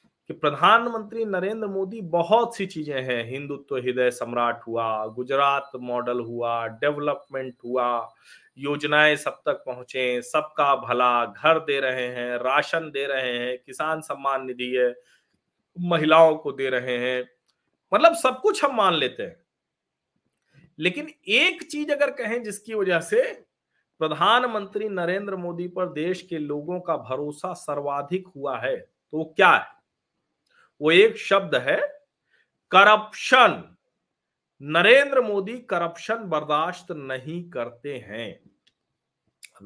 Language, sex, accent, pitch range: Hindi, male, native, 125-175 Hz